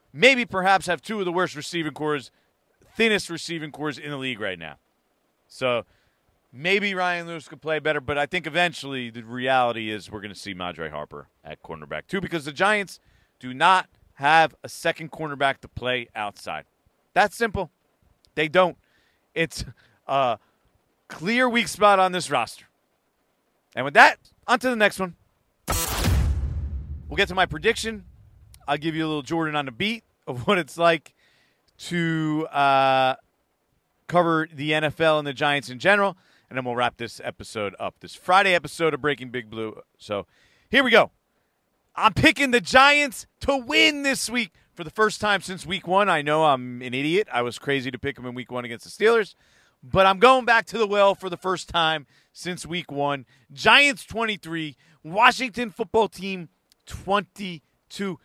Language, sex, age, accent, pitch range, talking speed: English, male, 40-59, American, 135-195 Hz, 175 wpm